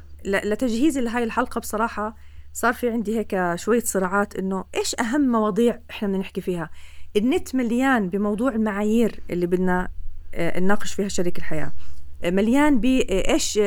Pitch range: 170-255 Hz